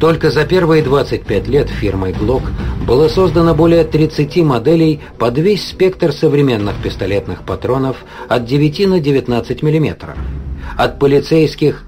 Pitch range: 105-160 Hz